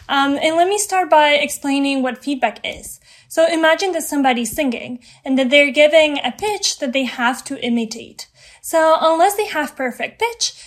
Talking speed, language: 180 wpm, English